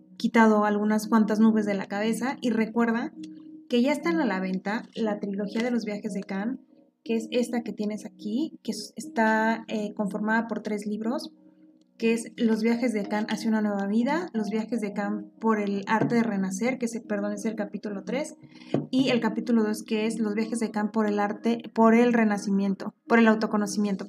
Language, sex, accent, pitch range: Spanish, female, Mexican, 205-235 Hz